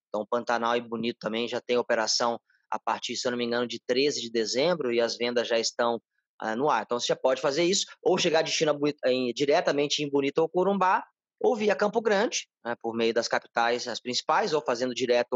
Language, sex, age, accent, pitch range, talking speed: Portuguese, male, 20-39, Brazilian, 120-175 Hz, 225 wpm